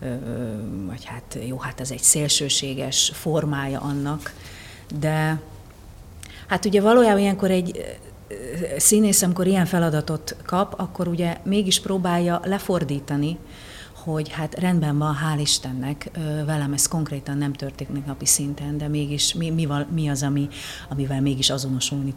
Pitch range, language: 145-180 Hz, Hungarian